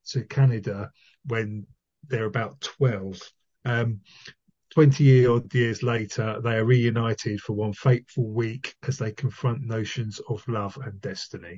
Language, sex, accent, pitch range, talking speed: English, male, British, 110-135 Hz, 130 wpm